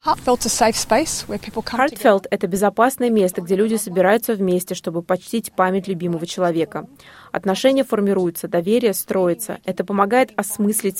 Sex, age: female, 20-39